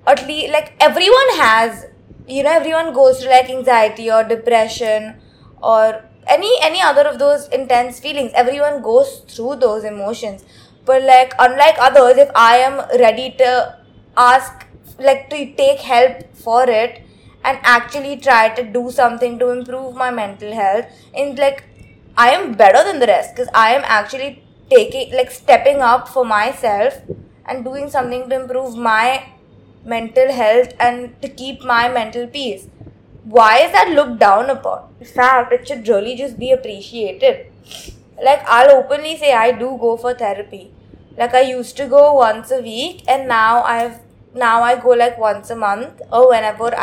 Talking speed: 165 wpm